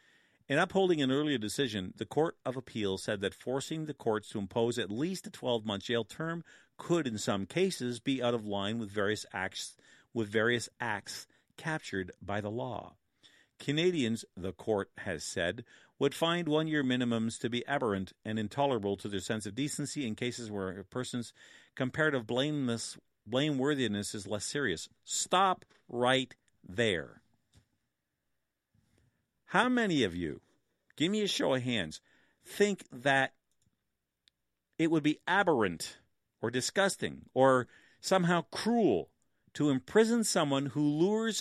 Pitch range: 115-170 Hz